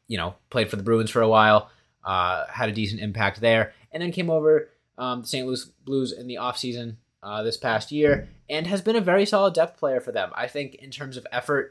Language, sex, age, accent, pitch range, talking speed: English, male, 20-39, American, 95-125 Hz, 240 wpm